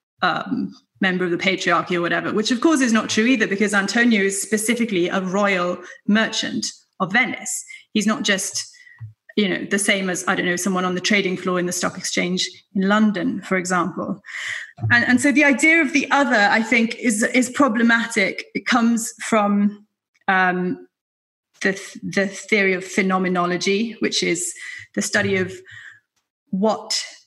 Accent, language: British, English